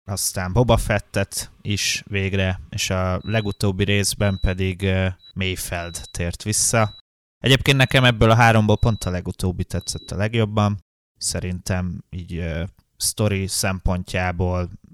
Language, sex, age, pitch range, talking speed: Hungarian, male, 20-39, 90-105 Hz, 115 wpm